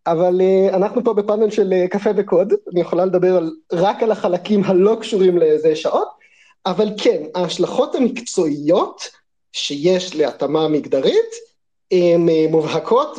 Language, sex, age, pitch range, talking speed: Hebrew, male, 30-49, 175-250 Hz, 120 wpm